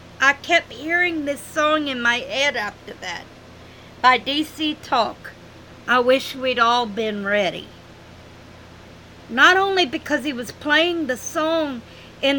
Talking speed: 135 wpm